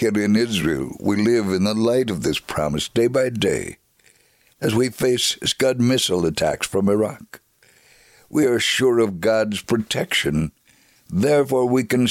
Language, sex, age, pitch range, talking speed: English, male, 60-79, 105-125 Hz, 155 wpm